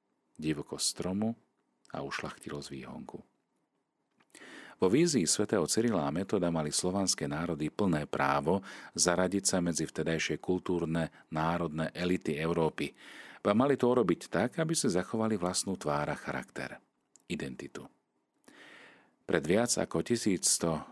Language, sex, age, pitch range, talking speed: Slovak, male, 40-59, 75-90 Hz, 110 wpm